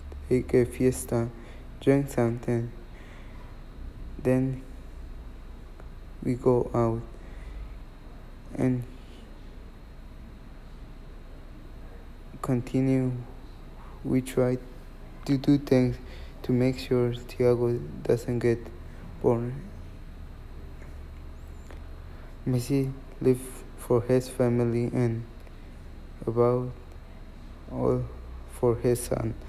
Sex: male